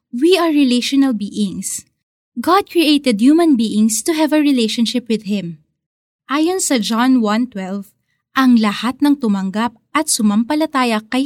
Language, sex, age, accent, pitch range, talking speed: Filipino, female, 20-39, native, 215-285 Hz, 135 wpm